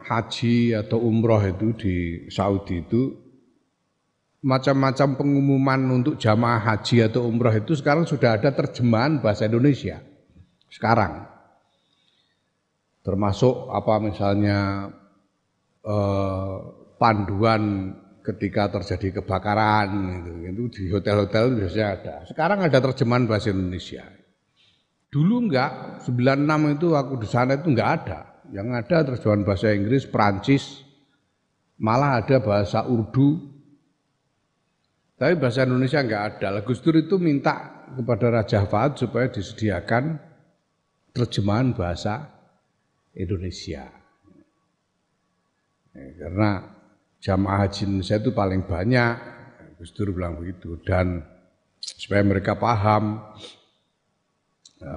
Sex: male